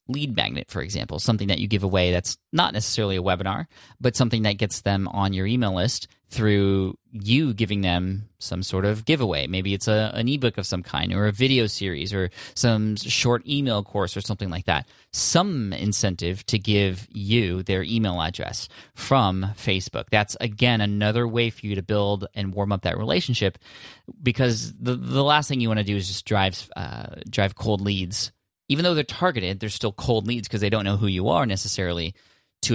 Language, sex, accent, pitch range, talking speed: English, male, American, 95-120 Hz, 200 wpm